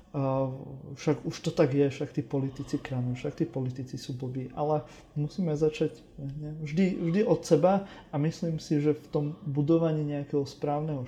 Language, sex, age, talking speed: Slovak, male, 30-49, 175 wpm